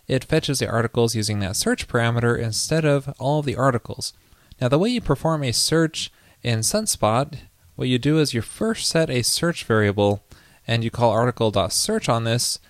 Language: English